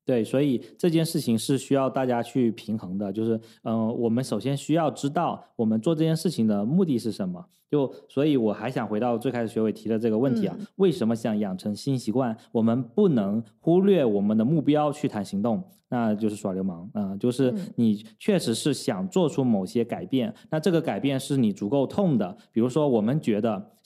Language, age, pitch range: Chinese, 20-39, 115-155 Hz